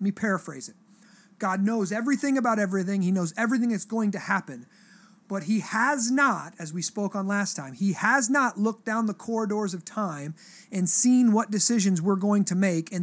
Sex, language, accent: male, English, American